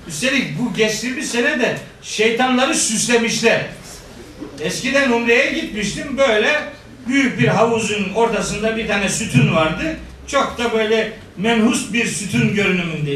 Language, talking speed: Turkish, 125 wpm